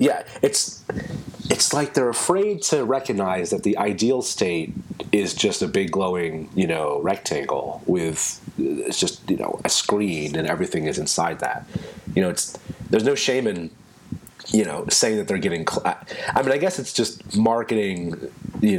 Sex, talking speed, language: male, 175 wpm, English